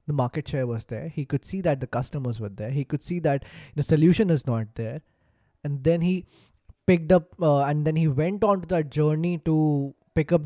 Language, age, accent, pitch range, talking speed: English, 20-39, Indian, 140-175 Hz, 225 wpm